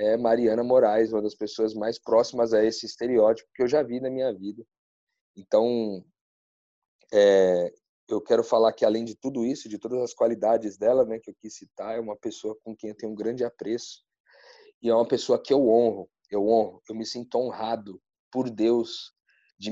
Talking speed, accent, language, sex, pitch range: 195 wpm, Brazilian, Portuguese, male, 110-130 Hz